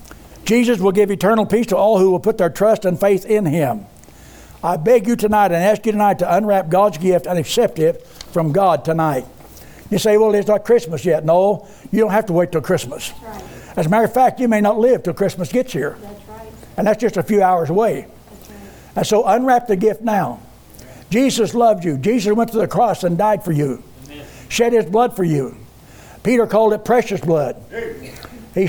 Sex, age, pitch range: male, 60-79, 165-210 Hz